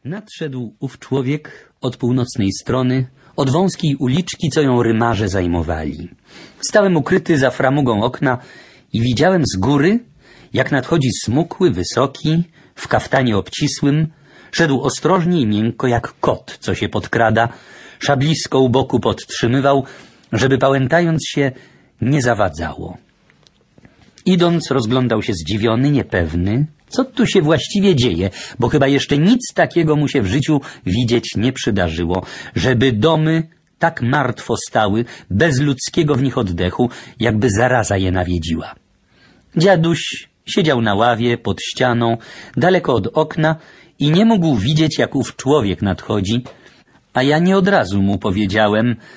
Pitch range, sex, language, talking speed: 115-155 Hz, male, Polish, 130 wpm